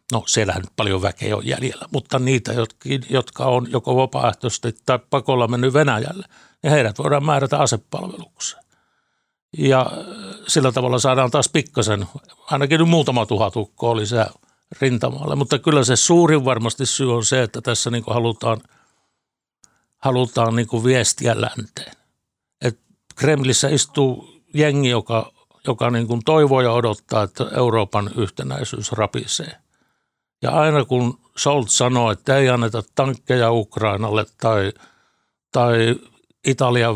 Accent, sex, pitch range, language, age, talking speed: native, male, 115-140 Hz, Finnish, 60-79, 125 wpm